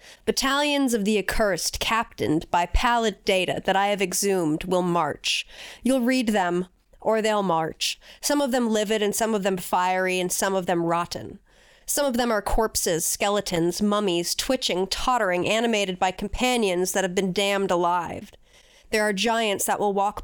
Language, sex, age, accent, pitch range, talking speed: English, female, 30-49, American, 185-225 Hz, 170 wpm